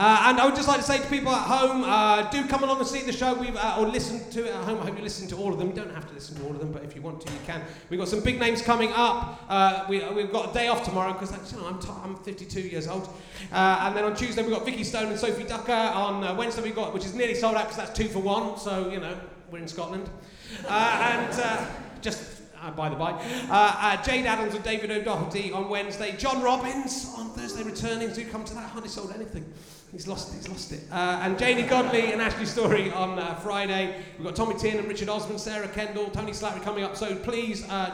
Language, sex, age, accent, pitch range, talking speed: English, male, 30-49, British, 185-230 Hz, 270 wpm